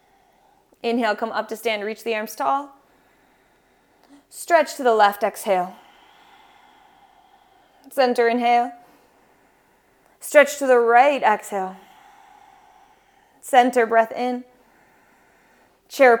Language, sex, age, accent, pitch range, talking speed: English, female, 20-39, American, 205-335 Hz, 95 wpm